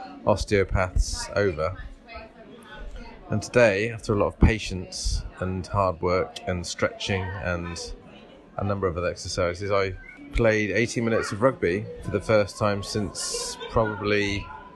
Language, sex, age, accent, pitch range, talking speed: English, male, 30-49, British, 95-115 Hz, 130 wpm